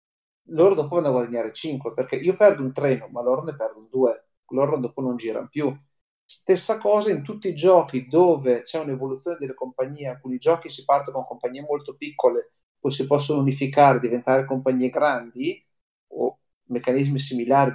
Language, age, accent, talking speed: Italian, 30-49, native, 170 wpm